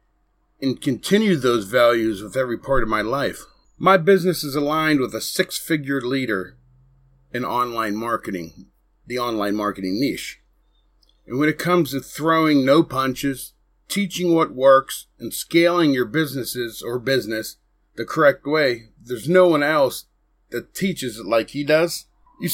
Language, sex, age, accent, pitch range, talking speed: English, male, 40-59, American, 125-175 Hz, 150 wpm